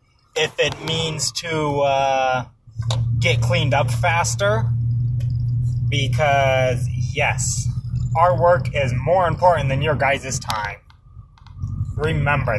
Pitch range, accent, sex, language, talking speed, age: 115-130 Hz, American, male, English, 100 wpm, 20-39